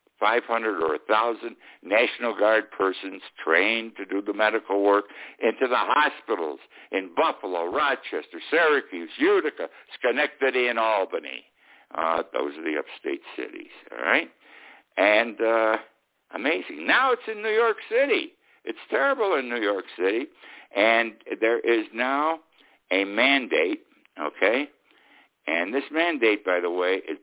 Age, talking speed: 60-79, 135 wpm